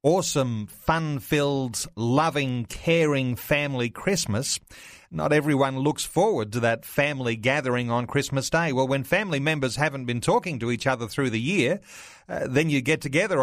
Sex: male